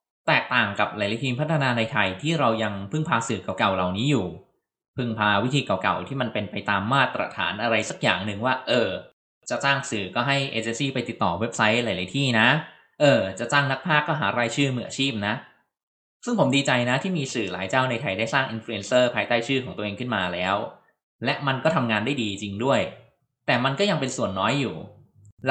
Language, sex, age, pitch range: Thai, male, 20-39, 110-140 Hz